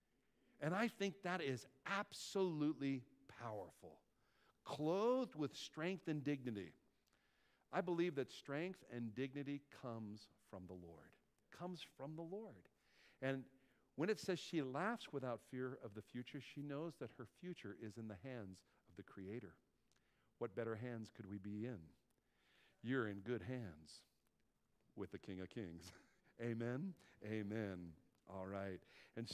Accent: American